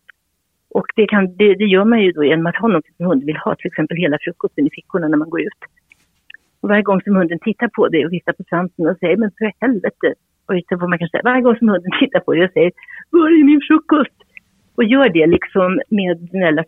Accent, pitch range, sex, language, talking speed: native, 175-225 Hz, female, Swedish, 250 wpm